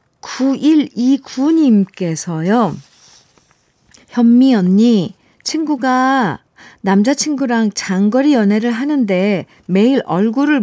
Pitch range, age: 185-255 Hz, 50-69